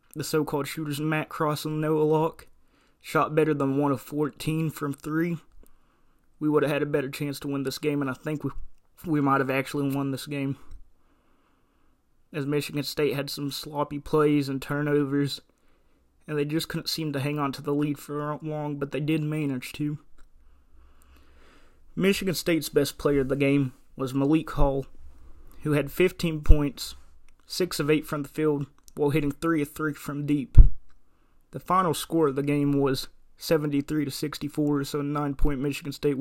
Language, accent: English, American